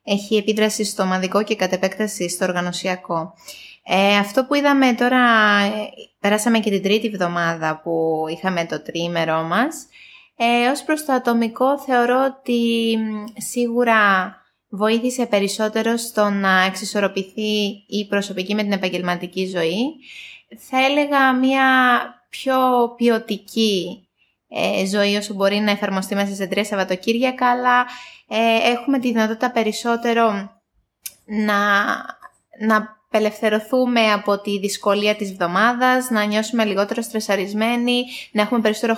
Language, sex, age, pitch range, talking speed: Greek, female, 20-39, 195-245 Hz, 120 wpm